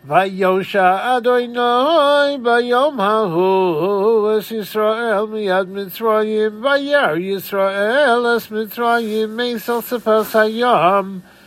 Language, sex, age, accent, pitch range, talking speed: English, male, 50-69, American, 200-240 Hz, 90 wpm